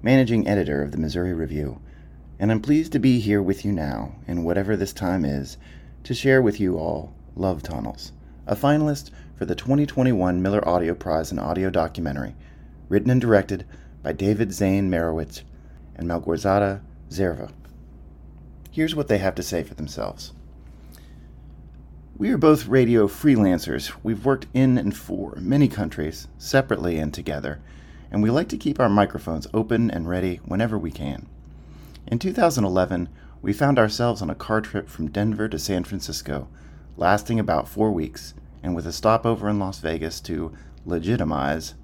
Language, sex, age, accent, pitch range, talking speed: English, male, 40-59, American, 75-105 Hz, 160 wpm